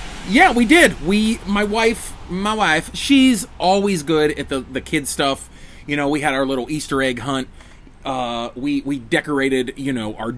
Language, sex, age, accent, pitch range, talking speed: English, male, 30-49, American, 135-200 Hz, 185 wpm